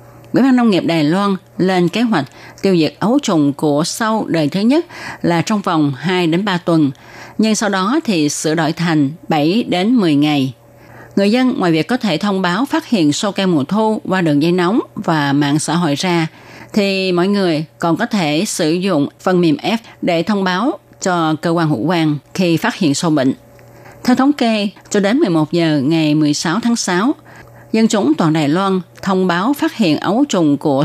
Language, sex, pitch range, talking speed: Vietnamese, female, 150-205 Hz, 205 wpm